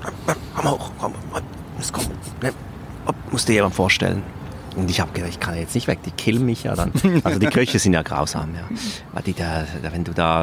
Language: German